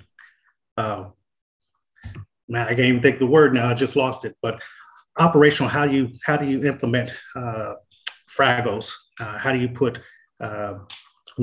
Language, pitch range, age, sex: English, 120-145 Hz, 40-59, male